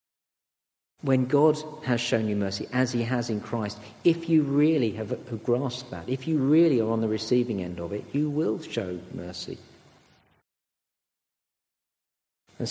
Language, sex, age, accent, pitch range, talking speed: English, male, 50-69, British, 105-145 Hz, 150 wpm